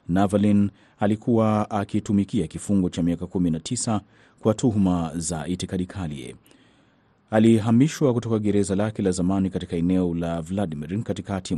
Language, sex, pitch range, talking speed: Swahili, male, 95-110 Hz, 125 wpm